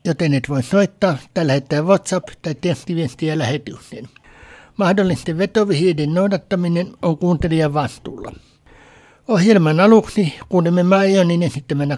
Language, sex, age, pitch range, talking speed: Finnish, male, 60-79, 160-195 Hz, 105 wpm